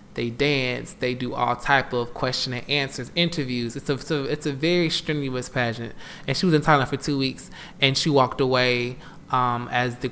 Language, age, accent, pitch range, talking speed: English, 20-39, American, 120-145 Hz, 210 wpm